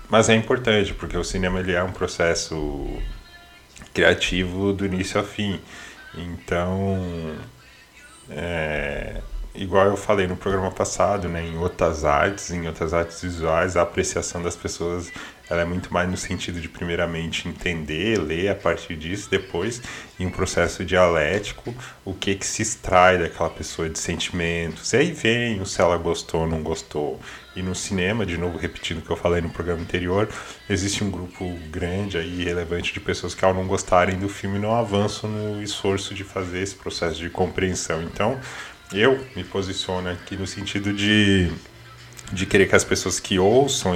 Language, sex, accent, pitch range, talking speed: Portuguese, male, Brazilian, 85-105 Hz, 165 wpm